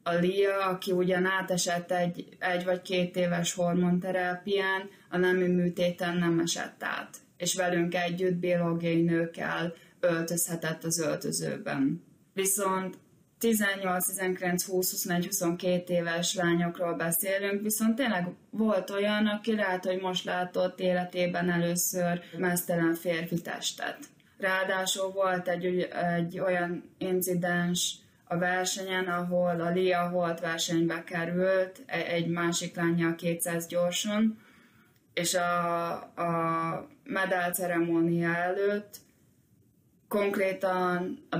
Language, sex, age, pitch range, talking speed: Hungarian, female, 20-39, 170-185 Hz, 110 wpm